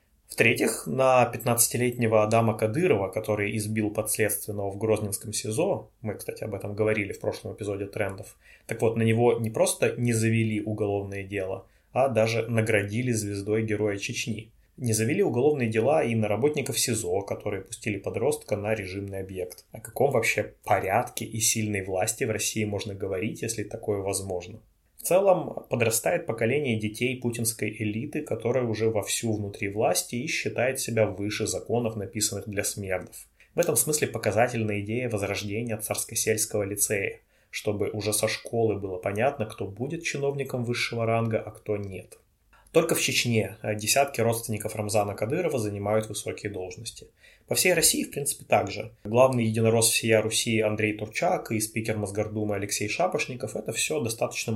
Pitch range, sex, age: 105-115 Hz, male, 20-39